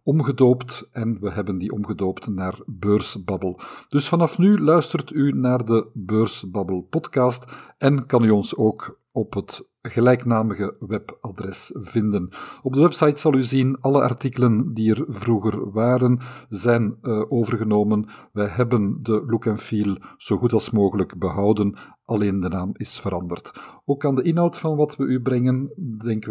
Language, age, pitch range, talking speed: Dutch, 50-69, 105-125 Hz, 155 wpm